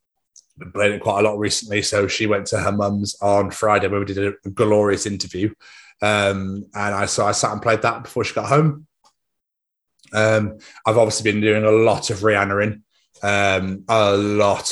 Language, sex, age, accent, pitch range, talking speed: English, male, 30-49, British, 100-120 Hz, 190 wpm